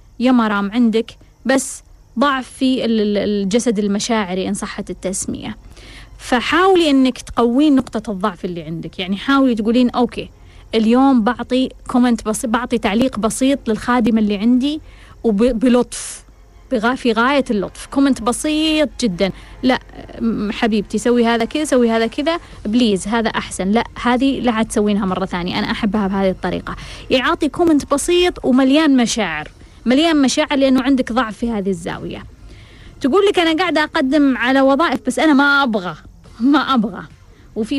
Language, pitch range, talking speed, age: Arabic, 215-270 Hz, 135 wpm, 20-39